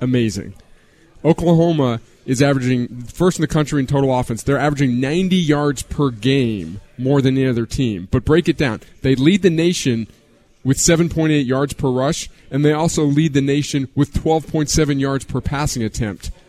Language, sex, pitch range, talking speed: English, male, 120-145 Hz, 170 wpm